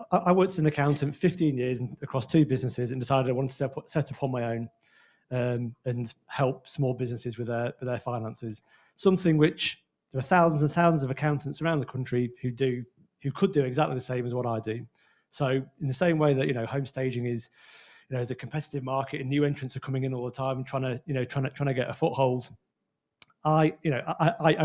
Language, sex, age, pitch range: English, male, 40-59, 125-145 Hz